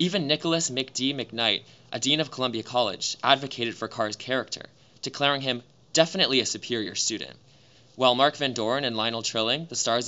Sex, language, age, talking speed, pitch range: male, English, 20-39, 165 wpm, 115-140 Hz